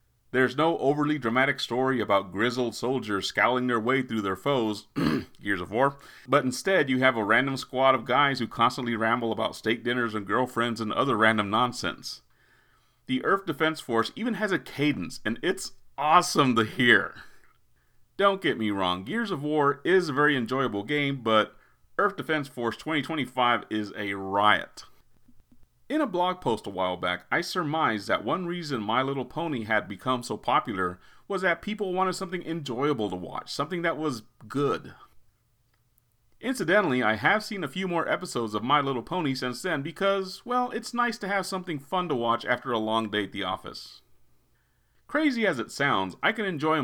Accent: American